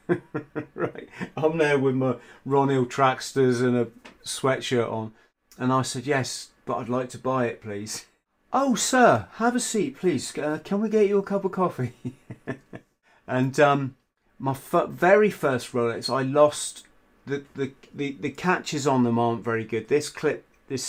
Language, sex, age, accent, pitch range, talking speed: English, male, 40-59, British, 115-145 Hz, 170 wpm